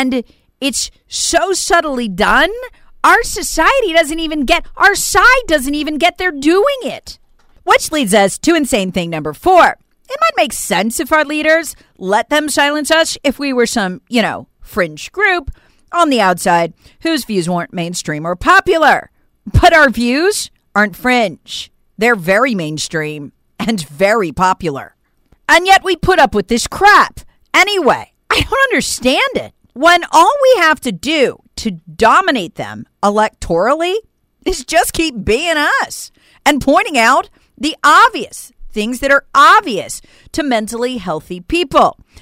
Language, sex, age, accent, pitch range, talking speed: English, female, 40-59, American, 205-340 Hz, 150 wpm